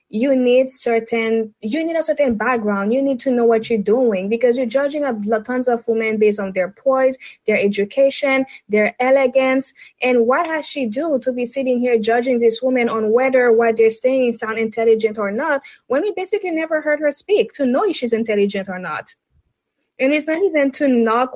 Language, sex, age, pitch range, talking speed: English, female, 10-29, 210-265 Hz, 200 wpm